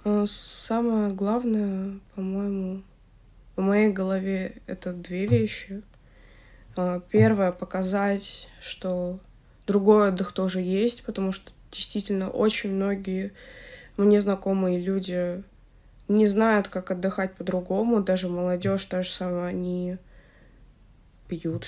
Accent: native